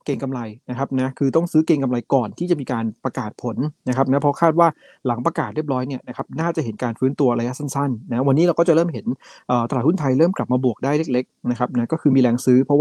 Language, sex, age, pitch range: Thai, male, 20-39, 120-150 Hz